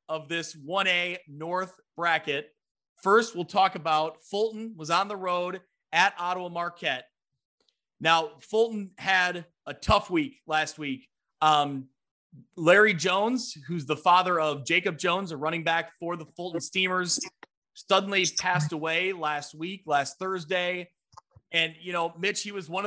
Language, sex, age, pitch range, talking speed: English, male, 30-49, 155-185 Hz, 145 wpm